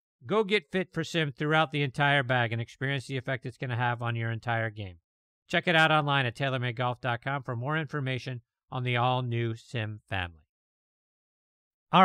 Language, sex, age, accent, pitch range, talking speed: English, male, 50-69, American, 125-160 Hz, 180 wpm